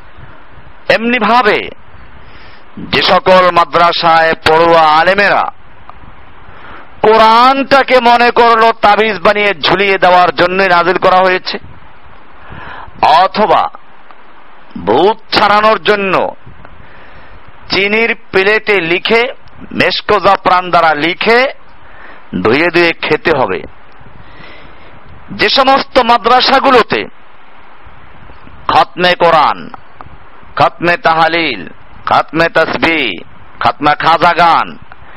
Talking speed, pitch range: 45 wpm, 175-230 Hz